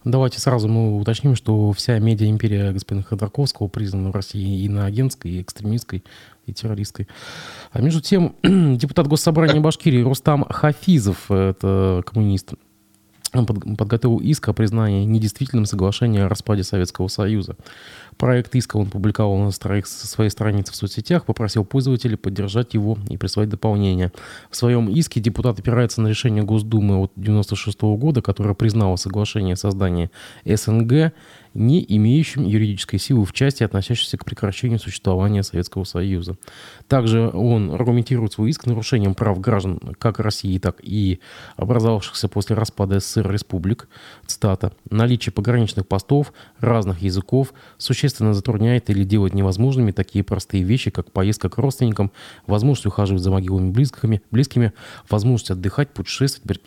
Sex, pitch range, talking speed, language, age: male, 100-120 Hz, 135 wpm, Russian, 20-39